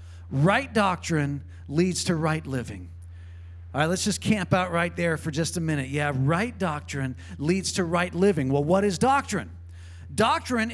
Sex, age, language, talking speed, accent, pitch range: male, 40-59, English, 170 wpm, American, 155-220 Hz